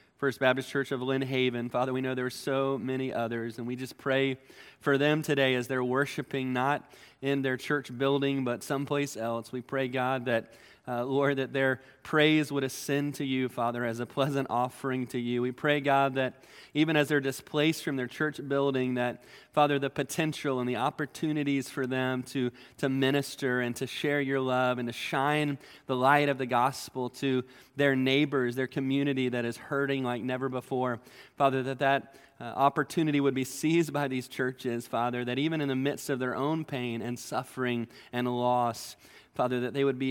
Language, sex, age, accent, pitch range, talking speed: English, male, 20-39, American, 120-140 Hz, 195 wpm